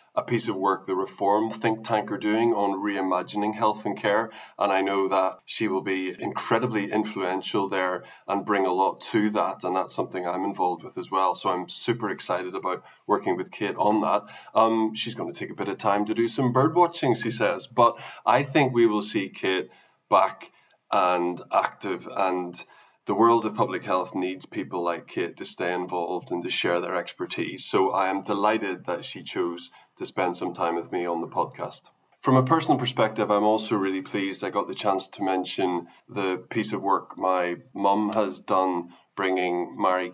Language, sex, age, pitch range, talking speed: English, male, 20-39, 90-105 Hz, 195 wpm